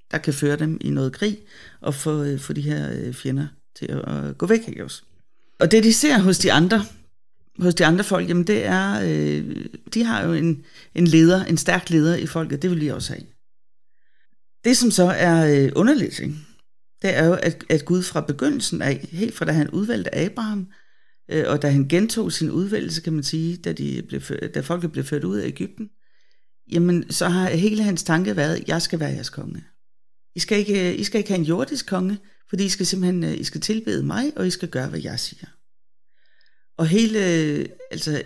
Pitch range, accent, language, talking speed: 150-195 Hz, native, Danish, 205 wpm